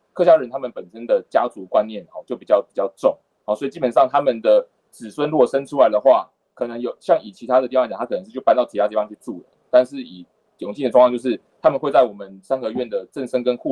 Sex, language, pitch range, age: male, Chinese, 105-140 Hz, 20-39